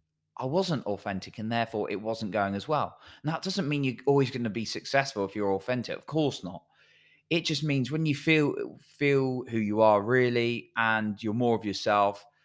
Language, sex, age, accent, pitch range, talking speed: English, male, 20-39, British, 100-130 Hz, 200 wpm